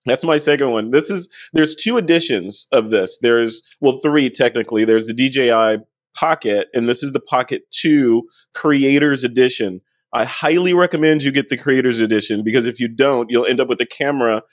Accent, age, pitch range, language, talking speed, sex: American, 30-49, 120-140 Hz, English, 185 wpm, male